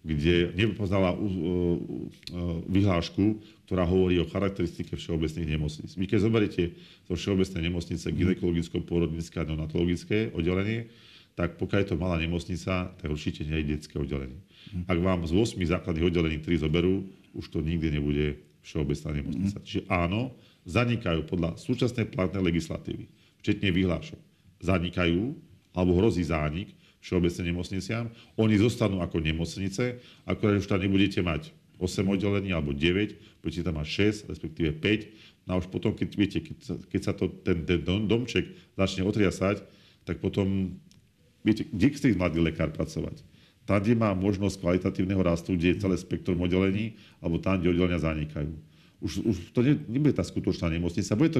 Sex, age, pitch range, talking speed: male, 40-59, 85-105 Hz, 150 wpm